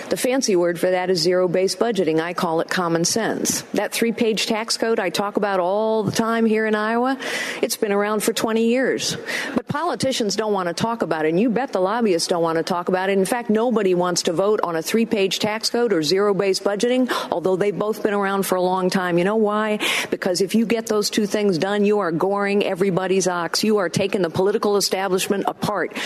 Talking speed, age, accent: 225 wpm, 50-69, American